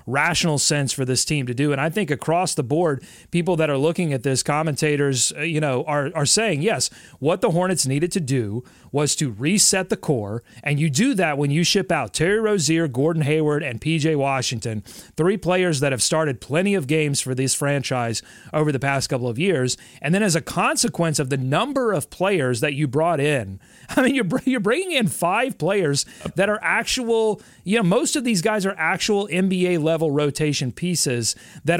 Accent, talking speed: American, 200 wpm